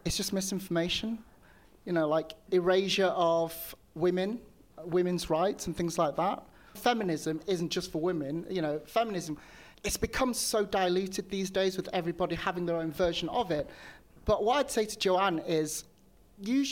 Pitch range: 160-200 Hz